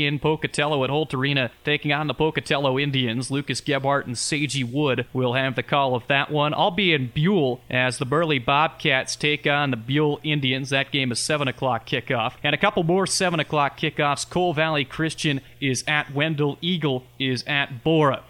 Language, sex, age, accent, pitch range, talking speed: English, male, 30-49, American, 130-155 Hz, 190 wpm